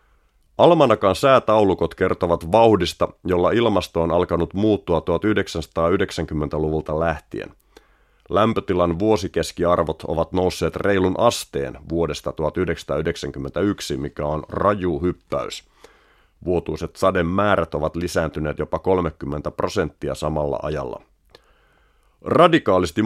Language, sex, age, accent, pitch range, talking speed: Finnish, male, 30-49, native, 80-95 Hz, 90 wpm